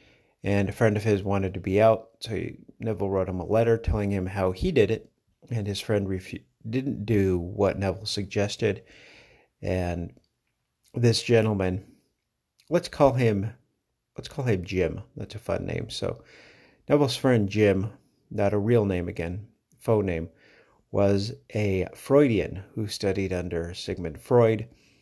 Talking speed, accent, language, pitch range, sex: 150 wpm, American, English, 95-110 Hz, male